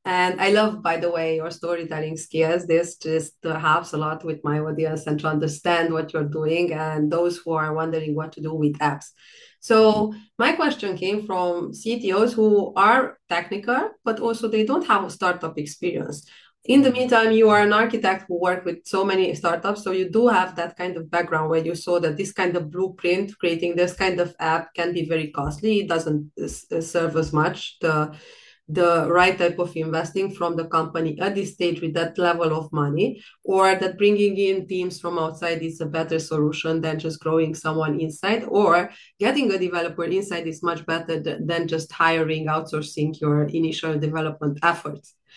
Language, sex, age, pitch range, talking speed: English, female, 30-49, 160-190 Hz, 190 wpm